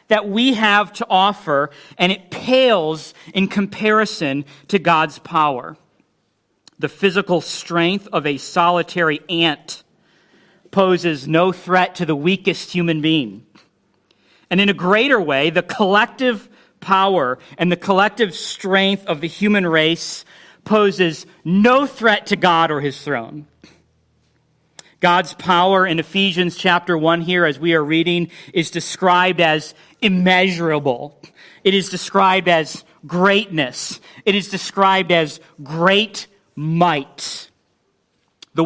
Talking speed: 125 wpm